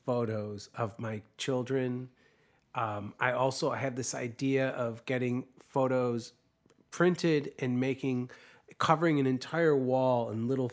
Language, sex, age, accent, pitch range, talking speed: English, male, 40-59, American, 115-140 Hz, 125 wpm